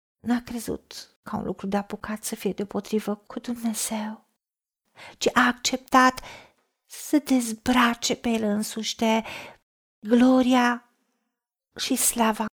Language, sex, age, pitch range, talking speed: Romanian, female, 50-69, 220-265 Hz, 115 wpm